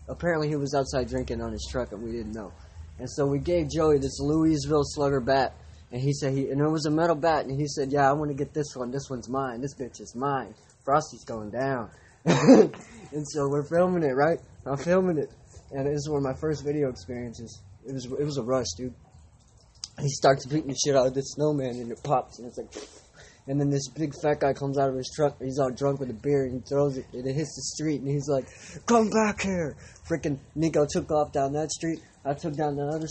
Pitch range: 130-145 Hz